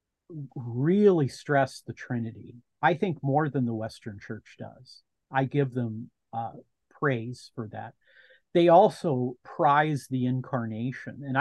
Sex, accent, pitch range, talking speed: male, American, 120-150 Hz, 130 wpm